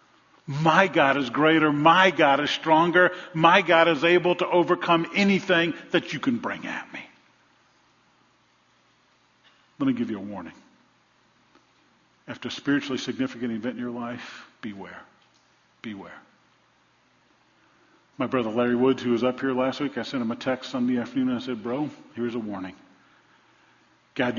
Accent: American